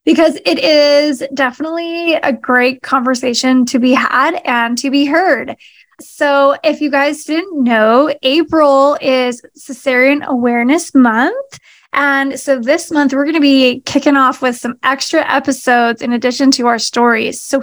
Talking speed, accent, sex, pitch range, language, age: 155 wpm, American, female, 260-305 Hz, English, 10-29